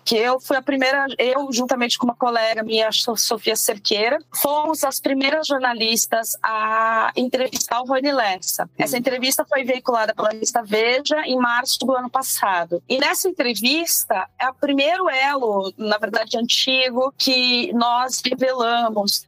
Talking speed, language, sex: 150 wpm, Portuguese, female